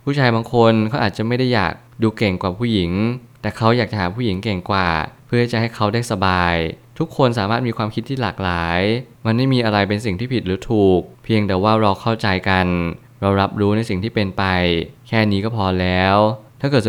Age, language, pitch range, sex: 20-39, Thai, 95-120 Hz, male